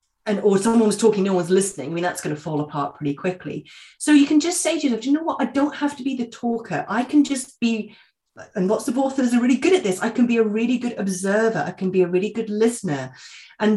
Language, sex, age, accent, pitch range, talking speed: English, female, 30-49, British, 180-230 Hz, 275 wpm